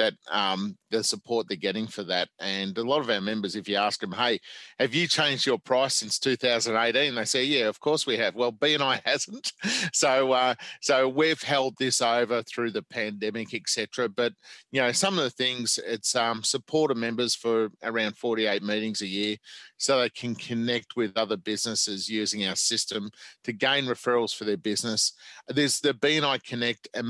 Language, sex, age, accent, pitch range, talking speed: English, male, 40-59, Australian, 110-125 Hz, 195 wpm